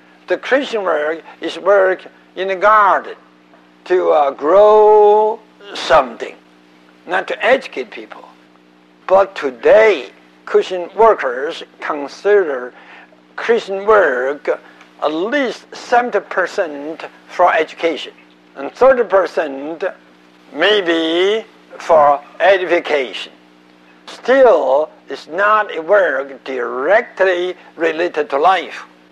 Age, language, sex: 60-79, English, male